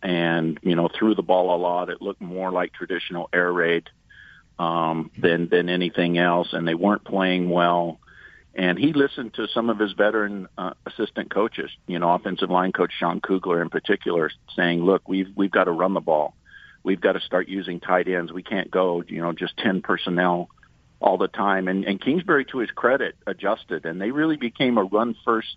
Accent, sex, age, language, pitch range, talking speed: American, male, 50-69, English, 90-105 Hz, 200 wpm